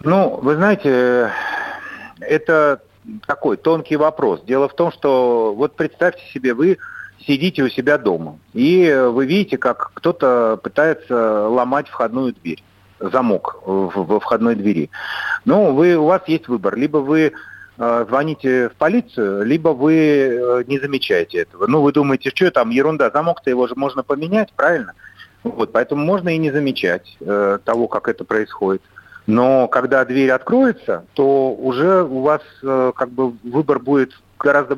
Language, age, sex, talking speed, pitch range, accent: Russian, 40-59, male, 145 wpm, 115-150 Hz, native